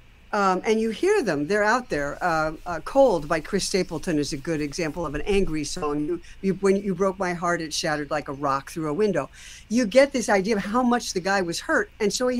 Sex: female